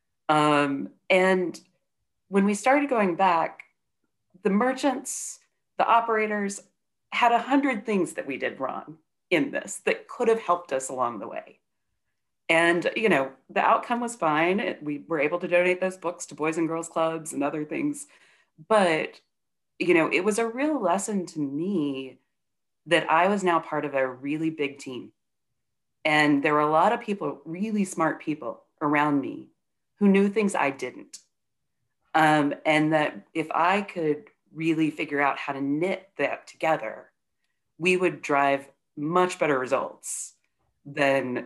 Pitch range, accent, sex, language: 140-195 Hz, American, female, English